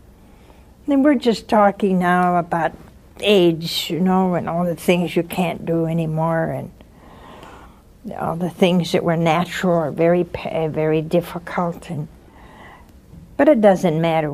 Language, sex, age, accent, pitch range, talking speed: English, female, 60-79, American, 165-205 Hz, 140 wpm